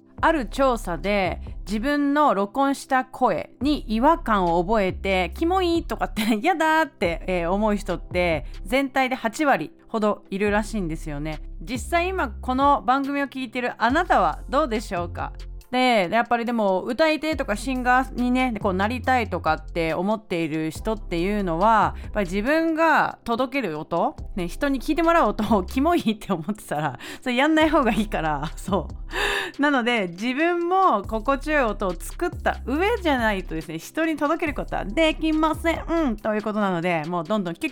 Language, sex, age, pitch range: Japanese, female, 30-49, 195-295 Hz